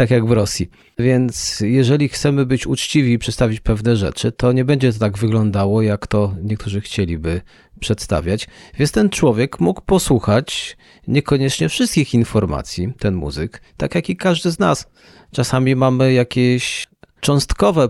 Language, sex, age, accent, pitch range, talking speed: Polish, male, 40-59, native, 100-125 Hz, 150 wpm